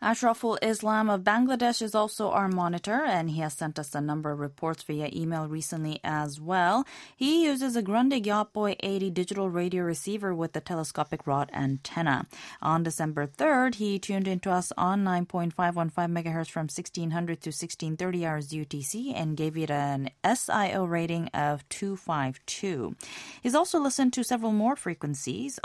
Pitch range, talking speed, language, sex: 150-205 Hz, 155 wpm, English, female